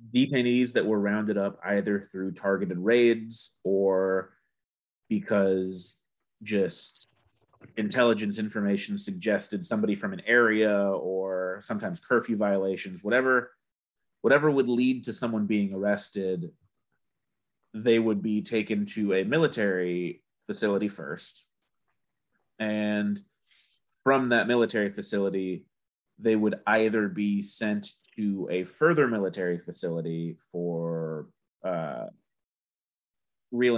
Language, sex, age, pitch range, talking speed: English, male, 30-49, 95-110 Hz, 105 wpm